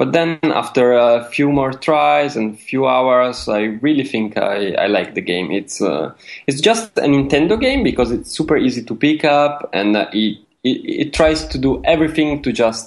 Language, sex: English, male